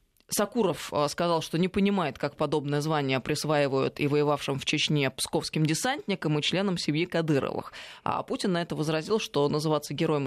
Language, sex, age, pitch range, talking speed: Russian, female, 20-39, 150-185 Hz, 160 wpm